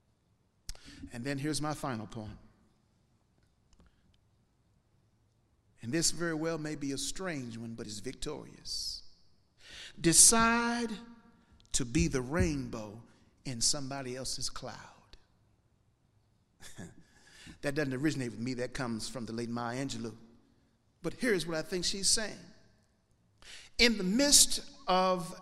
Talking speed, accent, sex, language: 120 wpm, American, male, English